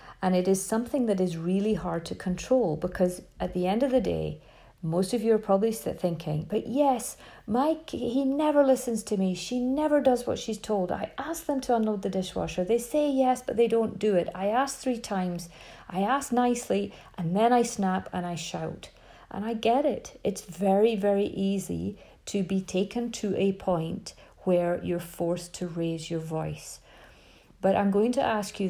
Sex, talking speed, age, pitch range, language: female, 195 wpm, 40-59, 185-235 Hz, English